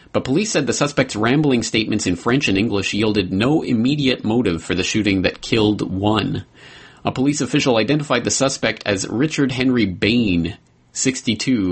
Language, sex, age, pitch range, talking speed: English, male, 30-49, 95-120 Hz, 165 wpm